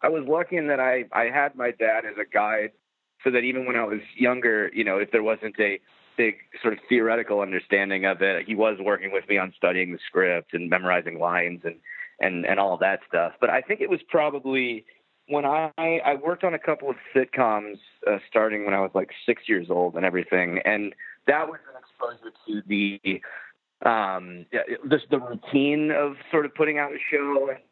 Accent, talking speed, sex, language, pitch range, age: American, 210 wpm, male, English, 100-140 Hz, 30-49